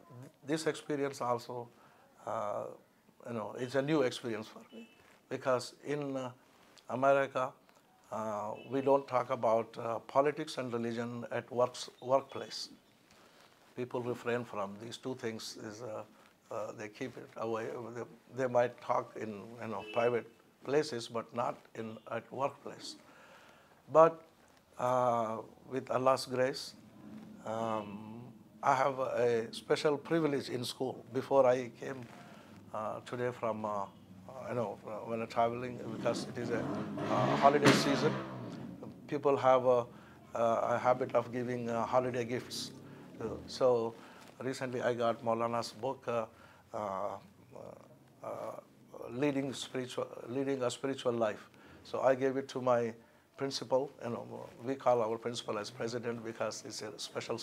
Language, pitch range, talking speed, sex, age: Urdu, 115-135 Hz, 140 wpm, male, 60-79